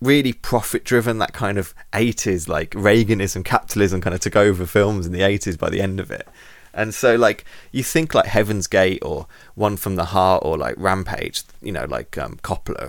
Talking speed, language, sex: 200 wpm, English, male